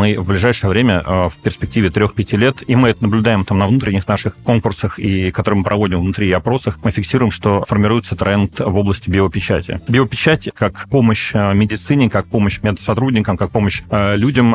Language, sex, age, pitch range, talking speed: Russian, male, 30-49, 100-115 Hz, 180 wpm